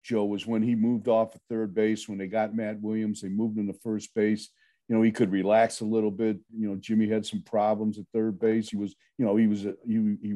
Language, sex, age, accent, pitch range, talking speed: English, male, 50-69, American, 105-125 Hz, 265 wpm